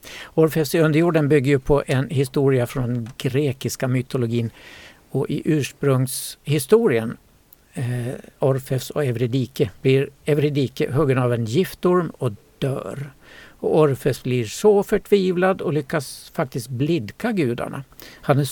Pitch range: 130-160 Hz